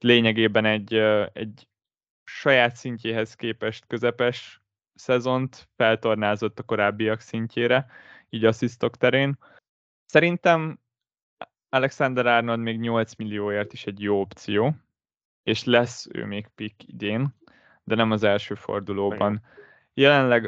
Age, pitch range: 20-39, 110-130 Hz